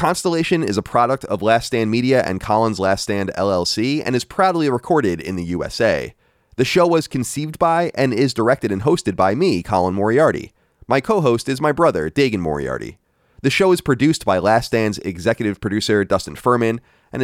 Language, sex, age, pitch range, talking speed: English, male, 30-49, 95-130 Hz, 185 wpm